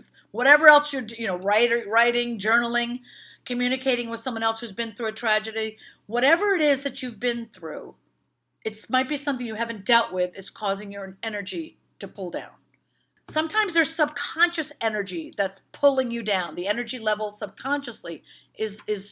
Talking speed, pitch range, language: 165 wpm, 215-285 Hz, English